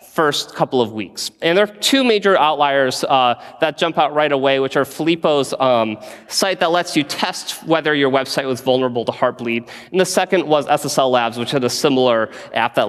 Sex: male